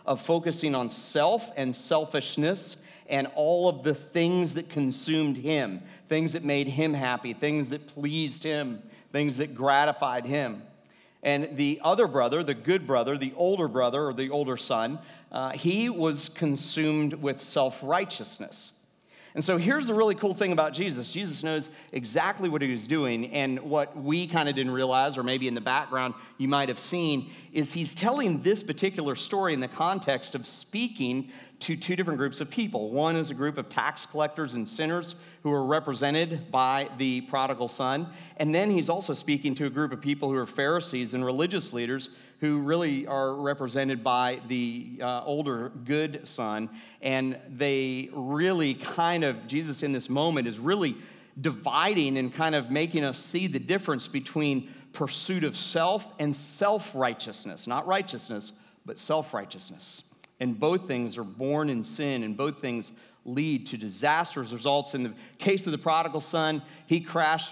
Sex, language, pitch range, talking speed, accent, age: male, English, 135-165 Hz, 170 wpm, American, 40-59